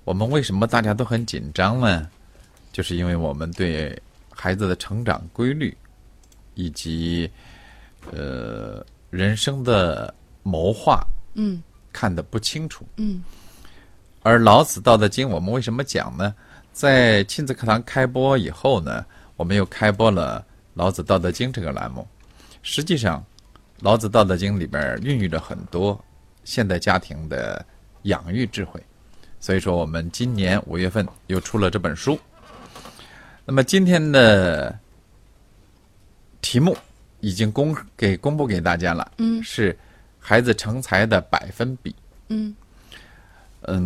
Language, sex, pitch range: Chinese, male, 90-120 Hz